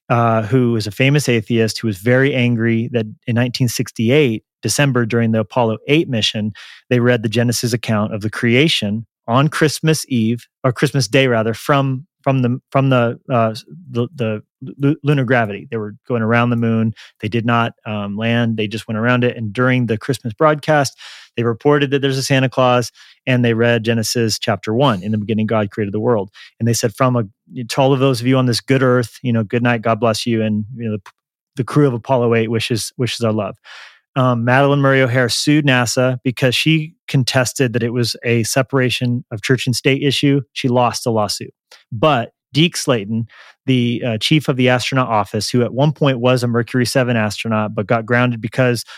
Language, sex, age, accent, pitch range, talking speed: English, male, 30-49, American, 115-135 Hz, 205 wpm